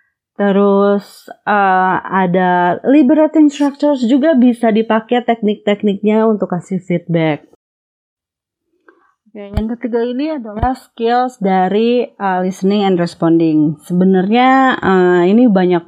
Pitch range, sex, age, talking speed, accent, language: 175-235 Hz, female, 30-49, 100 wpm, native, Indonesian